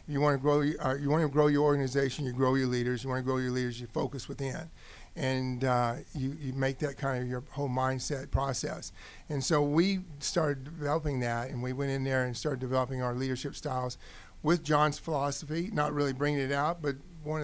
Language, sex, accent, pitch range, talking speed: English, male, American, 135-165 Hz, 195 wpm